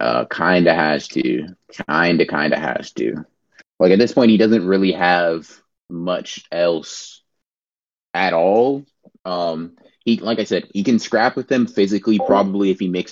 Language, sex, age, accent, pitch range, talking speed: English, male, 20-39, American, 85-100 Hz, 160 wpm